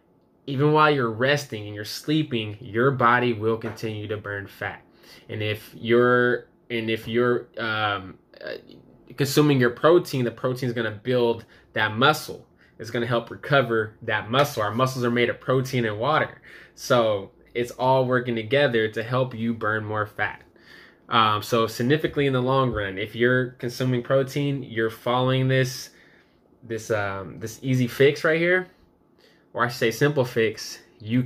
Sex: male